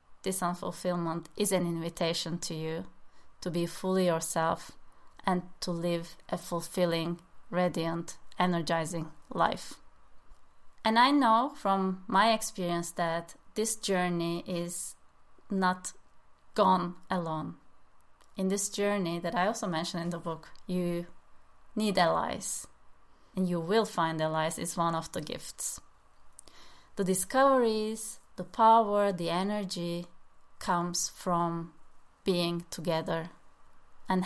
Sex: female